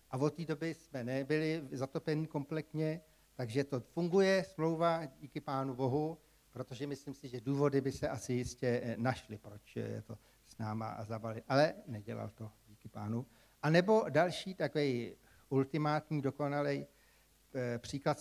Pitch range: 120-155 Hz